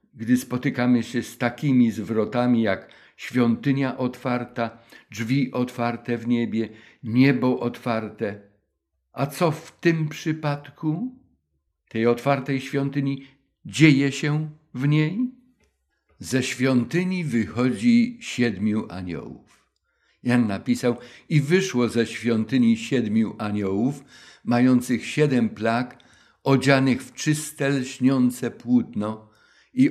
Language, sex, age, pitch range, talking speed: Polish, male, 50-69, 110-140 Hz, 100 wpm